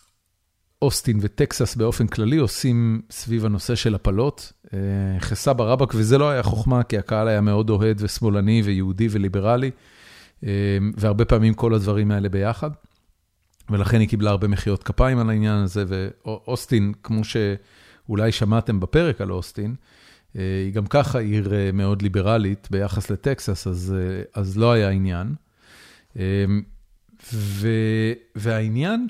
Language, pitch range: Hebrew, 100-120 Hz